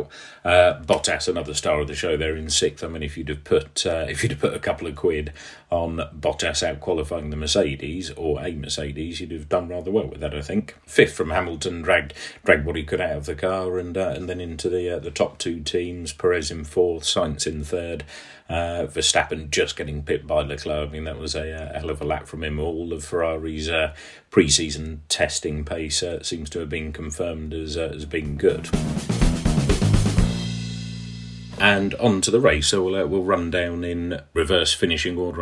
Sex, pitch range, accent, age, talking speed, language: male, 75-90 Hz, British, 40-59, 210 wpm, English